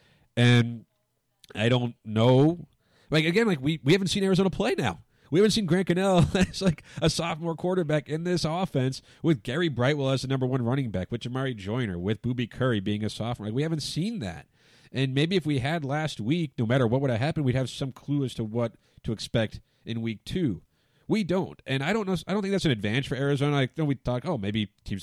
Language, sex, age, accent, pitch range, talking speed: English, male, 30-49, American, 110-145 Hz, 230 wpm